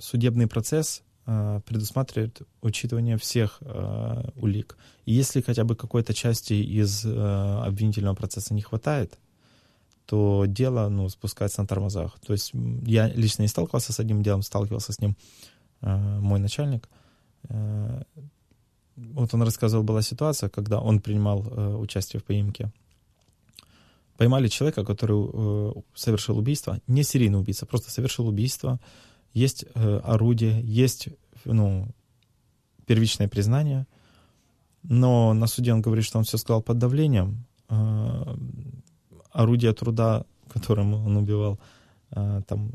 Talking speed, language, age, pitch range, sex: 130 wpm, Ukrainian, 20-39, 105-120 Hz, male